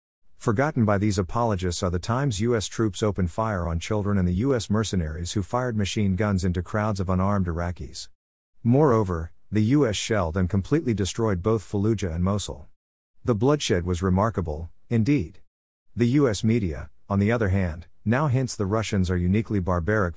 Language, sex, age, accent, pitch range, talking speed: English, male, 50-69, American, 90-110 Hz, 165 wpm